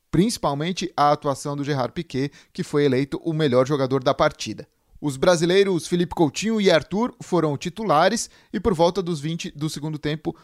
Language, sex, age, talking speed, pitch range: Portuguese, male, 20-39, 170 wpm, 135-165 Hz